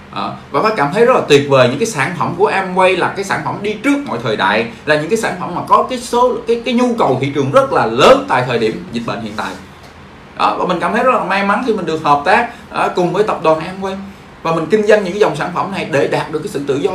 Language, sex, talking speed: Vietnamese, male, 295 wpm